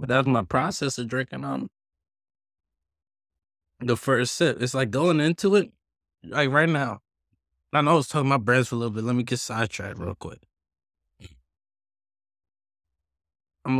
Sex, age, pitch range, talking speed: male, 20-39, 90-120 Hz, 160 wpm